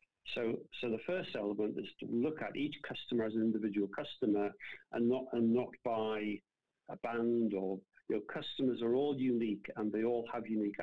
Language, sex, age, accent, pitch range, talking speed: English, male, 50-69, British, 105-125 Hz, 190 wpm